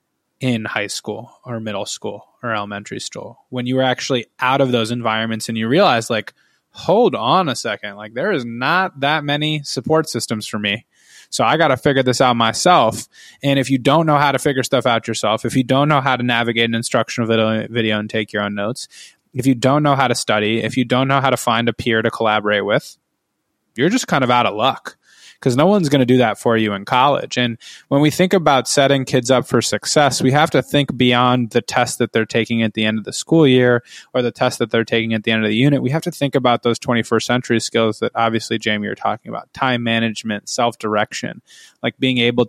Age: 20-39